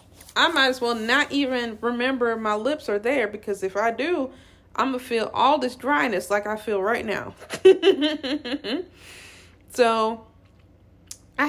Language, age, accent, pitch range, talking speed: English, 20-39, American, 150-240 Hz, 150 wpm